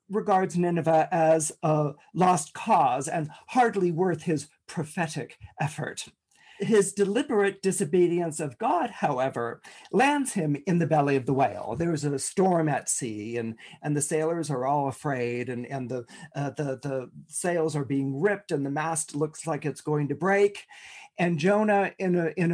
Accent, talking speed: American, 170 wpm